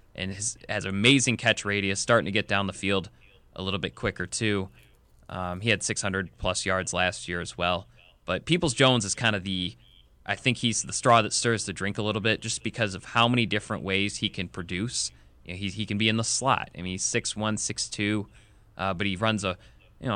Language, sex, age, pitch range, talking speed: English, male, 20-39, 95-115 Hz, 225 wpm